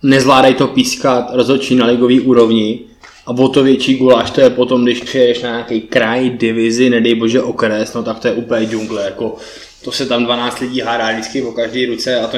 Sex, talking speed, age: male, 205 wpm, 20-39